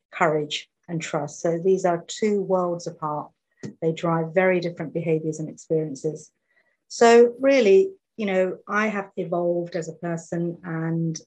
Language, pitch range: English, 165-195 Hz